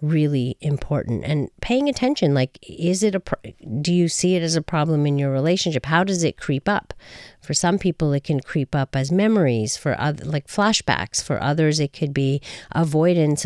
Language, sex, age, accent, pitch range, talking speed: English, female, 40-59, American, 135-165 Hz, 190 wpm